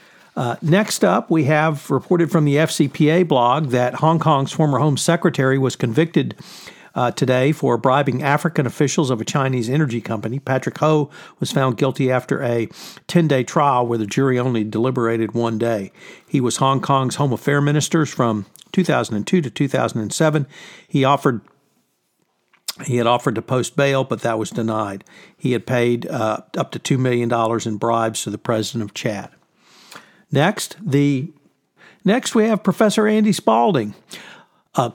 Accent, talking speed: American, 160 wpm